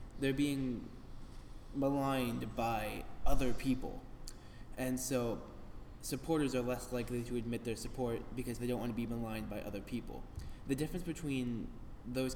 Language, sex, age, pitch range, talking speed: English, male, 20-39, 110-130 Hz, 145 wpm